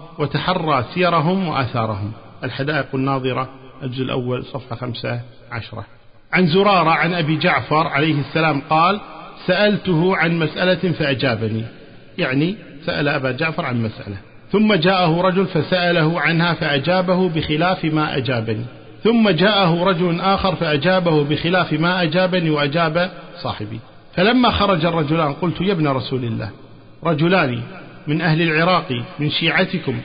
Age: 50-69